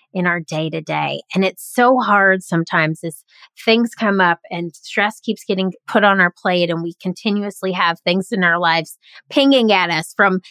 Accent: American